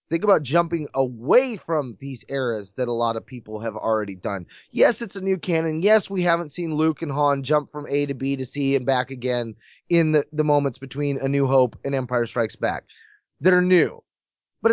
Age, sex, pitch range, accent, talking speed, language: 20-39, male, 135-180 Hz, American, 215 wpm, English